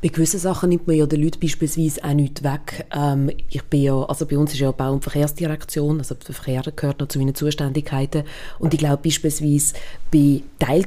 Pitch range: 145-175 Hz